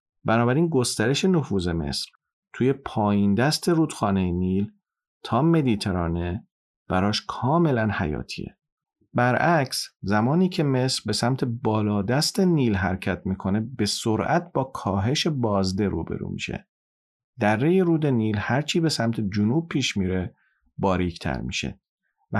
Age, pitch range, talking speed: 40-59, 100-145 Hz, 120 wpm